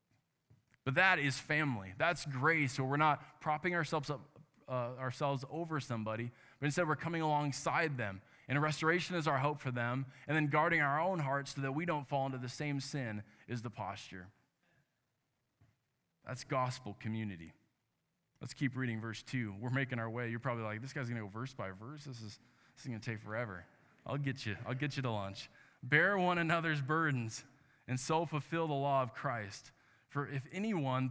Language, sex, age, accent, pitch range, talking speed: English, male, 20-39, American, 120-150 Hz, 190 wpm